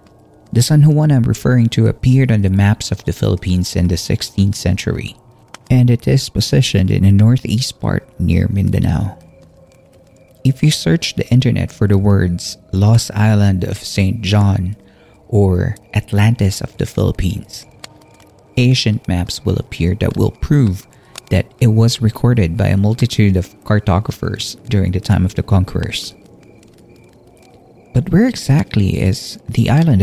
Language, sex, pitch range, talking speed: Filipino, male, 100-125 Hz, 145 wpm